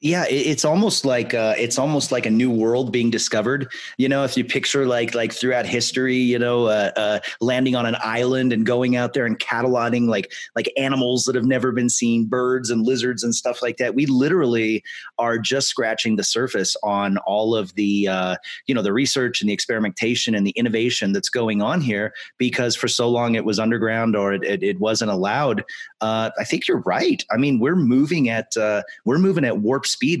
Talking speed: 210 wpm